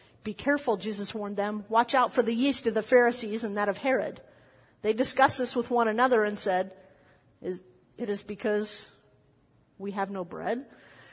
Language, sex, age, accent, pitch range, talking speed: English, female, 50-69, American, 210-270 Hz, 180 wpm